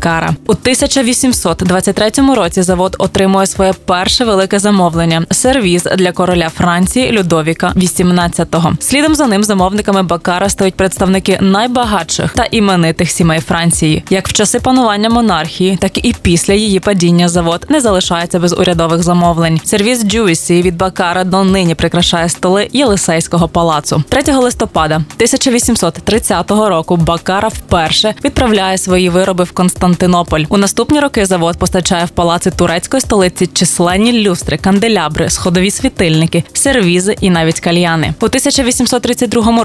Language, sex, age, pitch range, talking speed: Ukrainian, female, 20-39, 175-225 Hz, 130 wpm